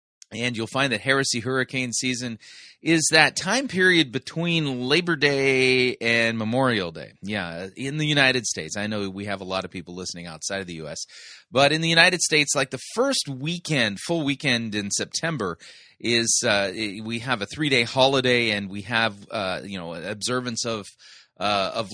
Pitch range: 95-140 Hz